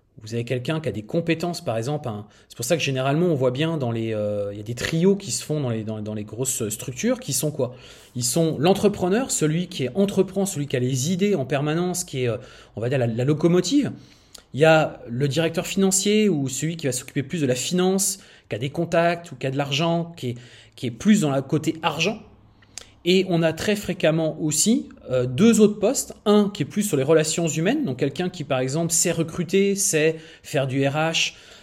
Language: French